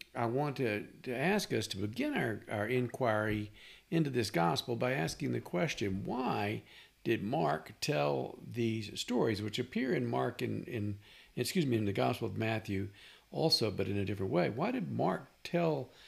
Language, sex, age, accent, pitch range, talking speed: English, male, 50-69, American, 100-115 Hz, 175 wpm